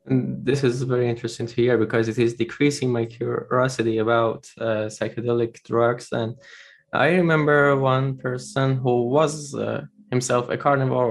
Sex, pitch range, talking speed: male, 110-130 Hz, 150 wpm